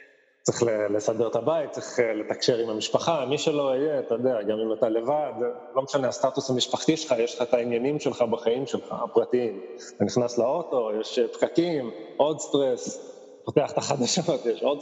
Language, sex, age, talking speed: Hebrew, male, 20-39, 170 wpm